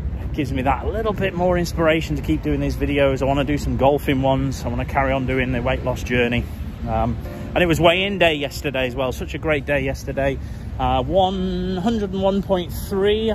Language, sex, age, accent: English, male, 30-49, British